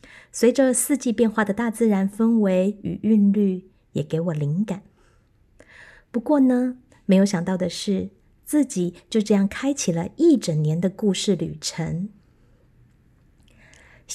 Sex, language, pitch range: female, Chinese, 180-230 Hz